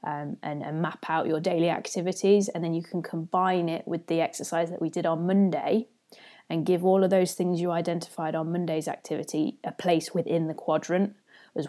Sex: female